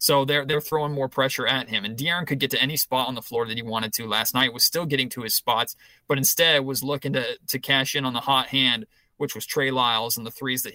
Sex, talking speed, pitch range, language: male, 280 wpm, 125-145 Hz, English